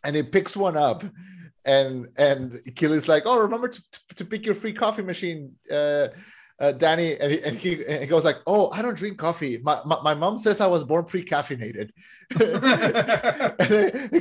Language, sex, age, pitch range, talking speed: English, male, 30-49, 165-240 Hz, 195 wpm